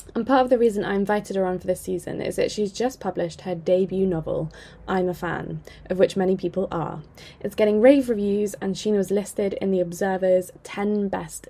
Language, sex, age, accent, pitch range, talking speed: English, female, 10-29, British, 185-230 Hz, 215 wpm